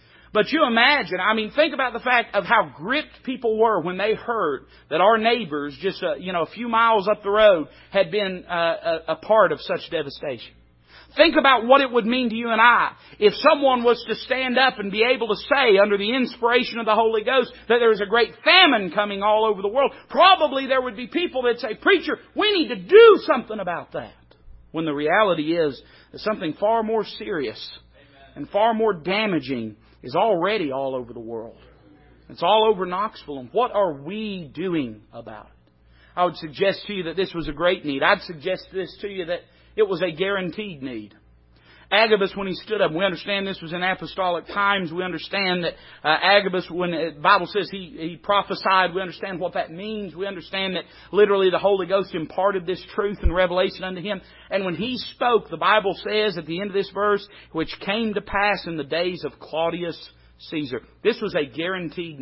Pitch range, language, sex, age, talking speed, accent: 165-220 Hz, English, male, 40-59, 205 wpm, American